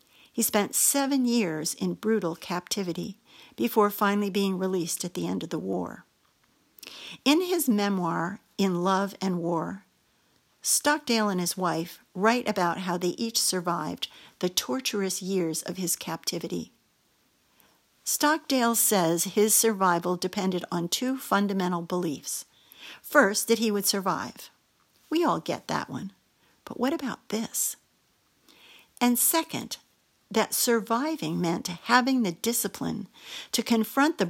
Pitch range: 180-235 Hz